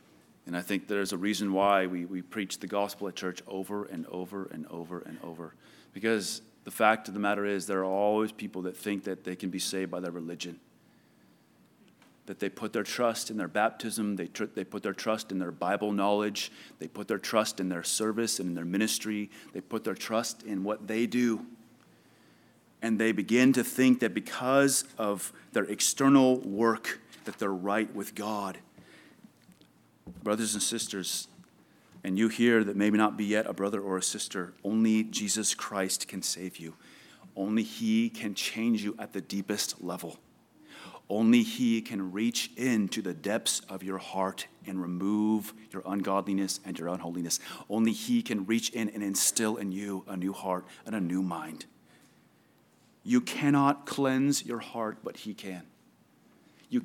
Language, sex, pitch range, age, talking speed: English, male, 95-110 Hz, 30-49, 175 wpm